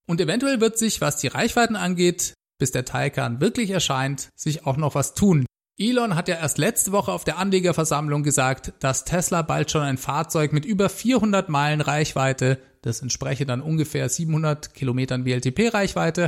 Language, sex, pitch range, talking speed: German, male, 140-195 Hz, 170 wpm